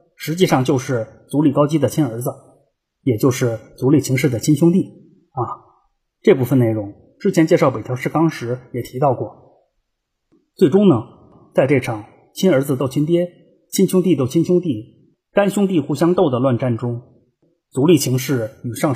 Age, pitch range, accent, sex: 30-49, 125-165 Hz, native, male